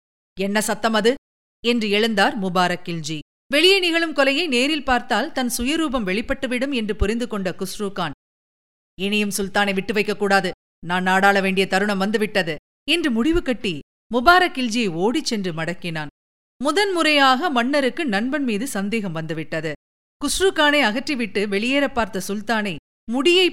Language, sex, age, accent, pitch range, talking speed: Tamil, female, 50-69, native, 195-285 Hz, 110 wpm